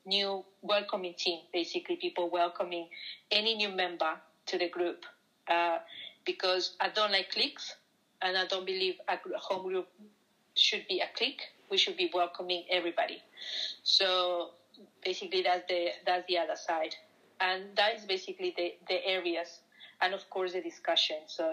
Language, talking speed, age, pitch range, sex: Romanian, 160 wpm, 40-59, 180-220 Hz, female